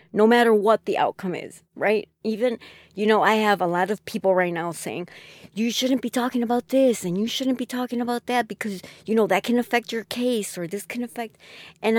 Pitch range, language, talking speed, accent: 170-205 Hz, English, 225 wpm, American